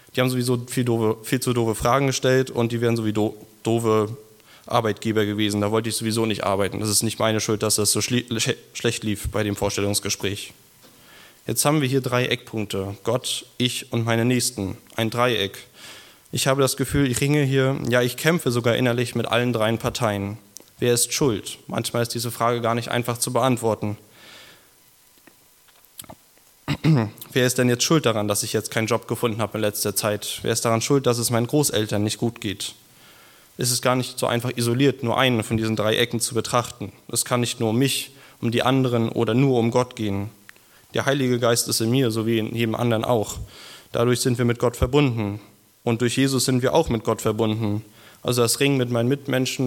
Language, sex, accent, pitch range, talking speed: German, male, German, 110-125 Hz, 200 wpm